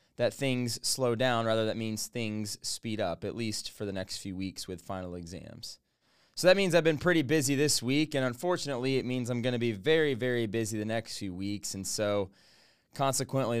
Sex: male